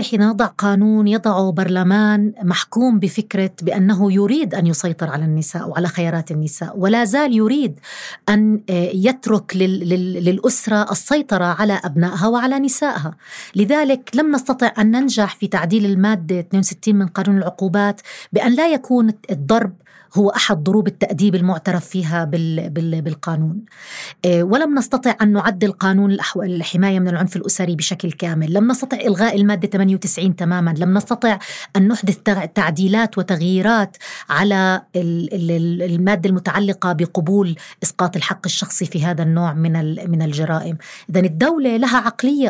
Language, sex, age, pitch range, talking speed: Arabic, female, 30-49, 180-225 Hz, 125 wpm